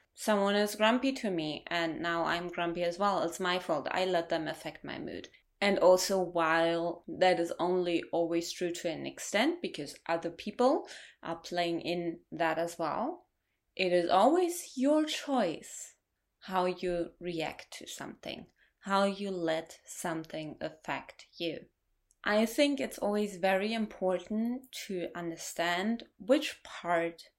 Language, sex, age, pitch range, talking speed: English, female, 20-39, 170-210 Hz, 145 wpm